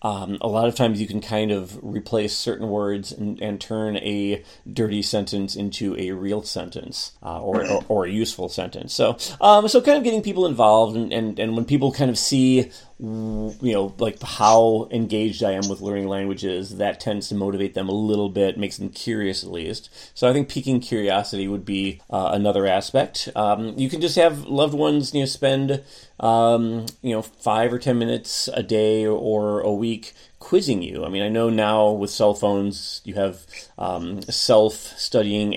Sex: male